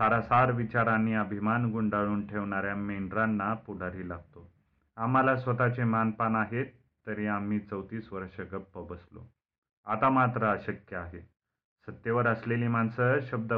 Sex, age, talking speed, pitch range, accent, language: male, 40-59, 115 wpm, 95-110 Hz, native, Marathi